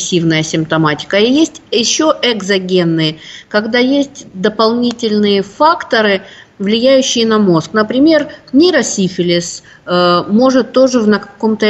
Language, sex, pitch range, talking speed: Russian, female, 180-225 Hz, 95 wpm